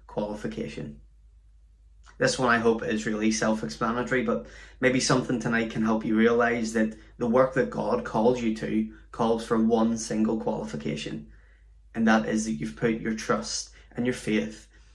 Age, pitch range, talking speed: 20-39, 105-120 Hz, 160 wpm